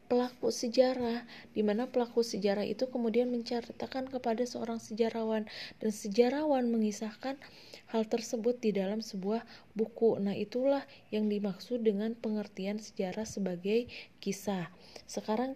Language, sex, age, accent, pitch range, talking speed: Indonesian, female, 20-39, native, 215-245 Hz, 115 wpm